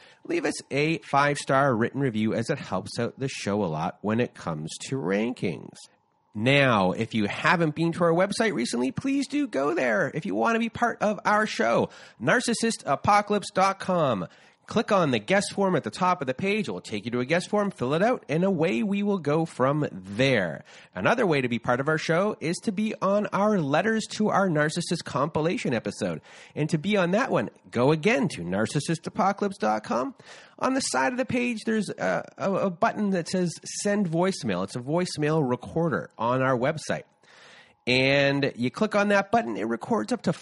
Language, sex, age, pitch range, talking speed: English, male, 30-49, 125-205 Hz, 195 wpm